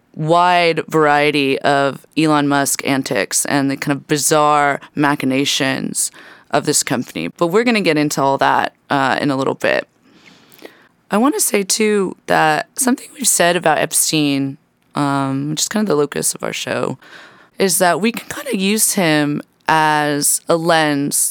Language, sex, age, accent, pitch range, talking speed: English, female, 20-39, American, 140-170 Hz, 170 wpm